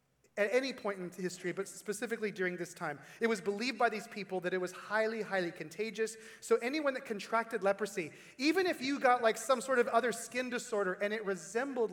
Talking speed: 205 wpm